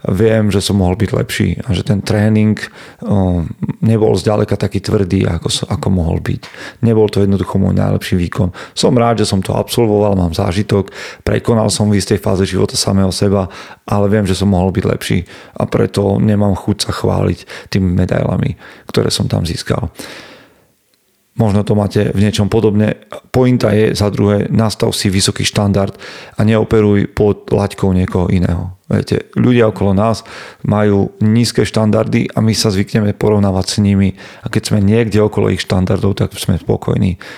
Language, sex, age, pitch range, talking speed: Slovak, male, 40-59, 95-110 Hz, 165 wpm